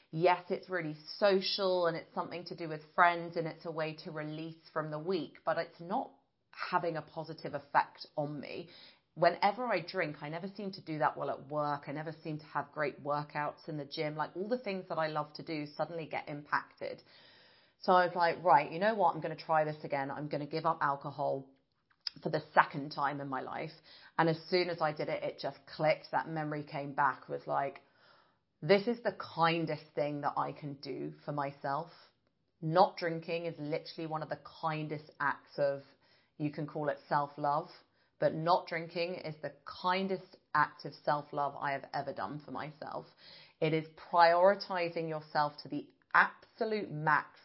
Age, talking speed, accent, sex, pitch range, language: 30-49, 195 wpm, British, female, 150-175 Hz, English